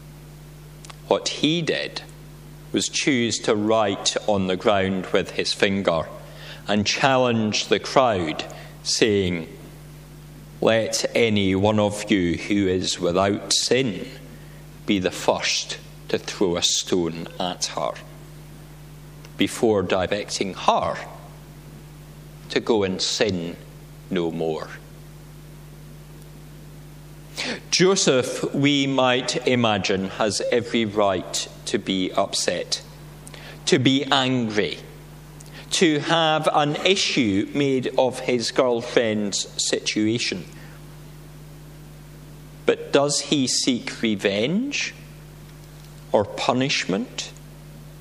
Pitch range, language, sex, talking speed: 120-155 Hz, English, male, 90 wpm